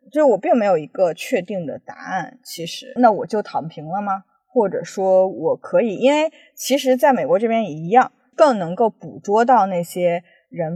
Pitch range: 190-265 Hz